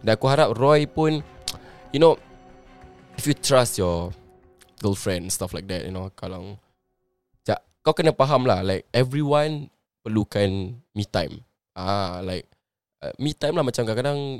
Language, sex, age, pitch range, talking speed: Malay, male, 10-29, 100-125 Hz, 150 wpm